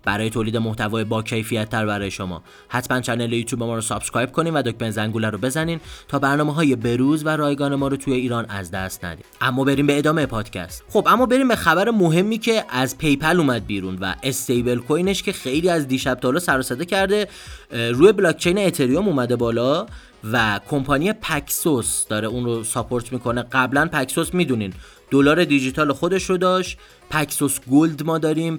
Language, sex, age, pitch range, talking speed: Persian, male, 30-49, 120-160 Hz, 170 wpm